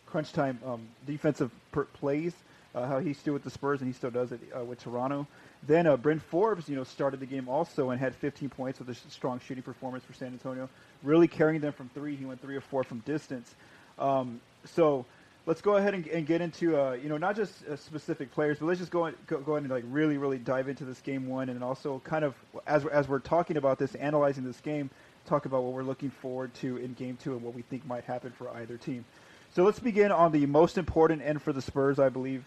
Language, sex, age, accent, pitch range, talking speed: English, male, 30-49, American, 130-155 Hz, 250 wpm